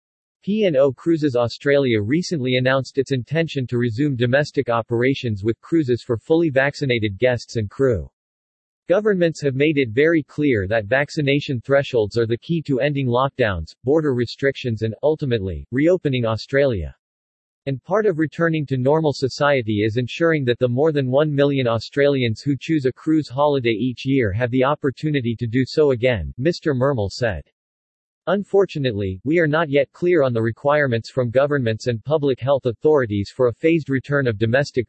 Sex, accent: male, American